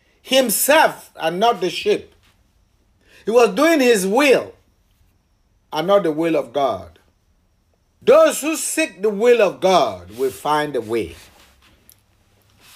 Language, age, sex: English, 50-69, male